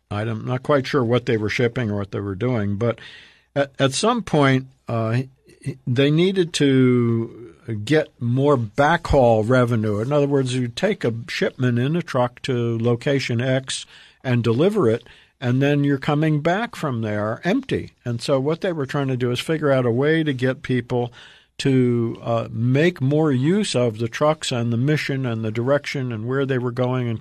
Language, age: English, 50-69